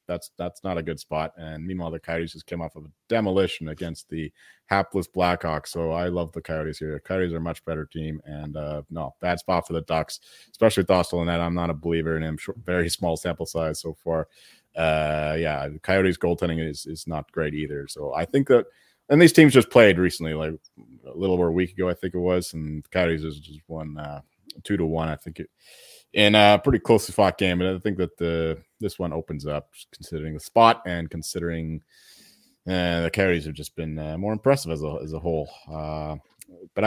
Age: 30-49